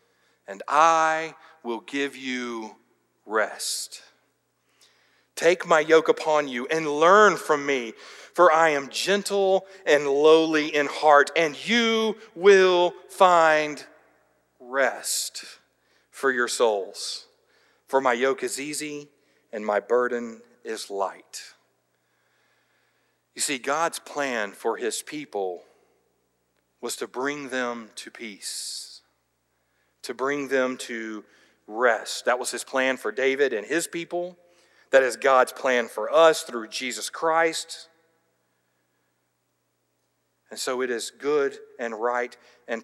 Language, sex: English, male